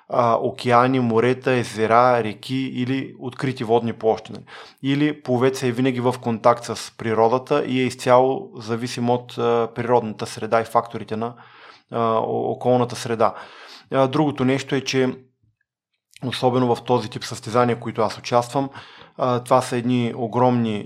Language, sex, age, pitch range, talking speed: Bulgarian, male, 20-39, 115-130 Hz, 130 wpm